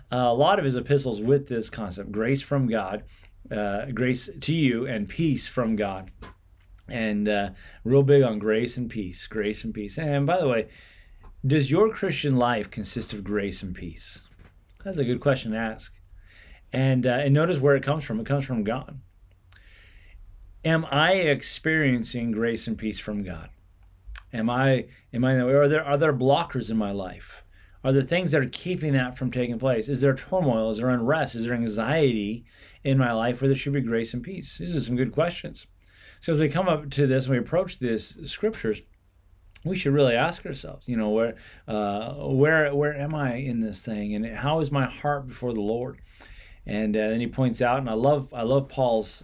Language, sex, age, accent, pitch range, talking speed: English, male, 30-49, American, 105-140 Hz, 200 wpm